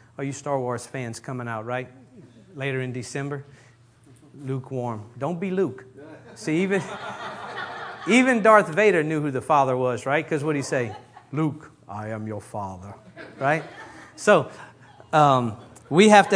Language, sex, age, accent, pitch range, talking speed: English, male, 50-69, American, 125-160 Hz, 145 wpm